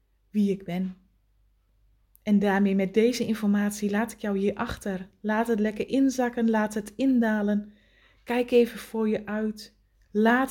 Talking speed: 150 wpm